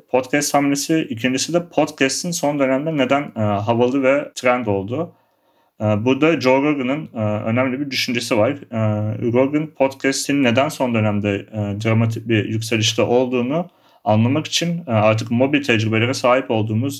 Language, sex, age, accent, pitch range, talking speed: Turkish, male, 40-59, native, 110-135 Hz, 125 wpm